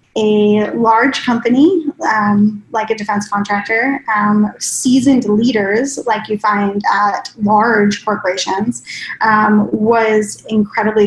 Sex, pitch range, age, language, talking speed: female, 210-250 Hz, 10-29, English, 110 wpm